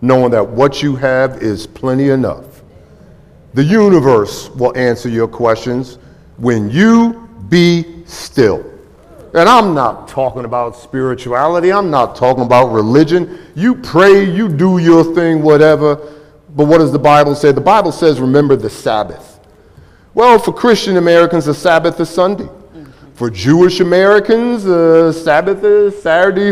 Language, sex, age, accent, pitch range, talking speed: English, male, 50-69, American, 130-185 Hz, 145 wpm